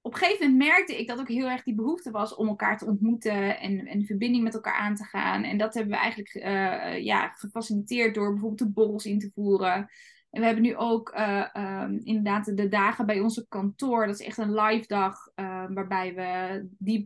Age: 20-39